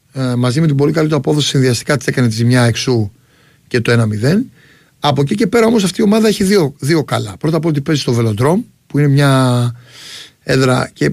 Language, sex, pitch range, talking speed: Greek, male, 130-165 Hz, 205 wpm